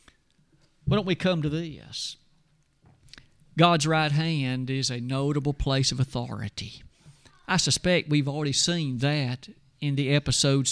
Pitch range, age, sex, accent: 135-170 Hz, 50-69, male, American